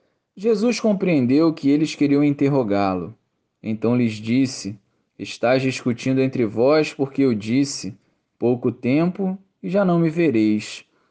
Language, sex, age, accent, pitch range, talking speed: Portuguese, male, 20-39, Brazilian, 115-165 Hz, 125 wpm